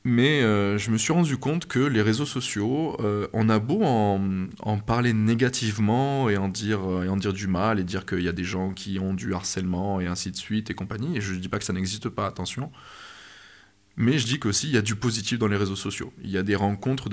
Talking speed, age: 250 wpm, 20-39